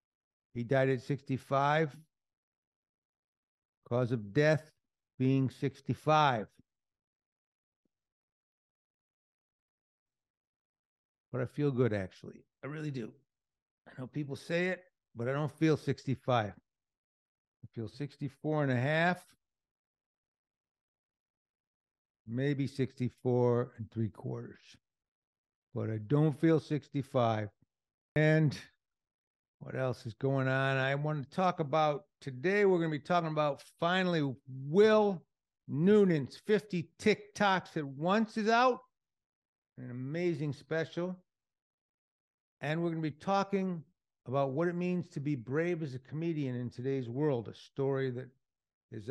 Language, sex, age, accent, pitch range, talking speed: English, male, 60-79, American, 125-160 Hz, 115 wpm